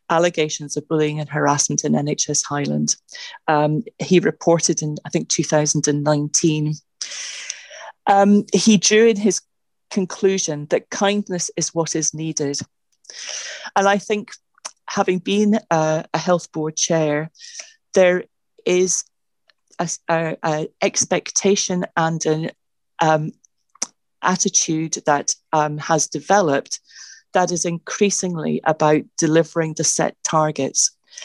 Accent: British